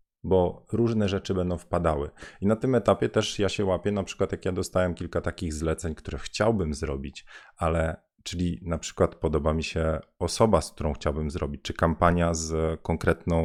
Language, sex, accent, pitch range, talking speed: Polish, male, native, 80-105 Hz, 180 wpm